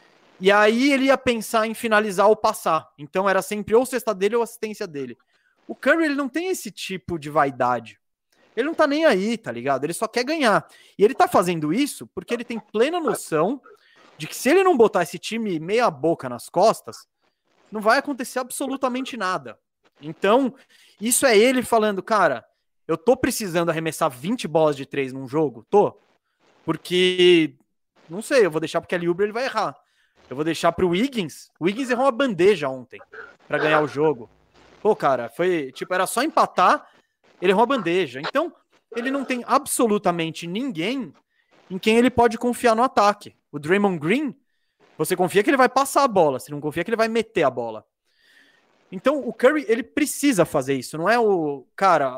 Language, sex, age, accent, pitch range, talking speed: Portuguese, male, 20-39, Brazilian, 160-255 Hz, 190 wpm